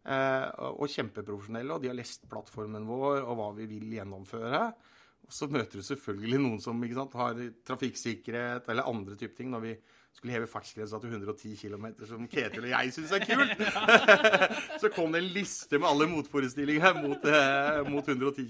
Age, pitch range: 30-49, 120-170 Hz